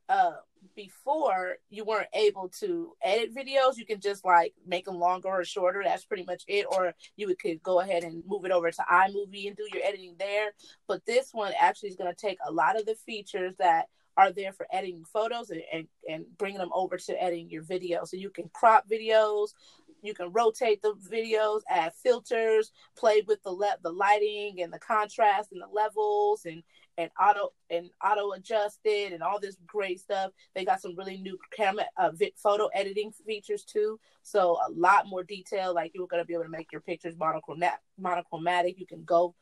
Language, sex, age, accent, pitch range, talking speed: English, female, 30-49, American, 175-215 Hz, 200 wpm